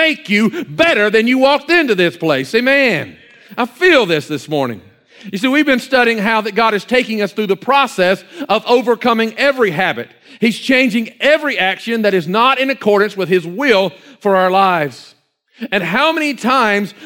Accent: American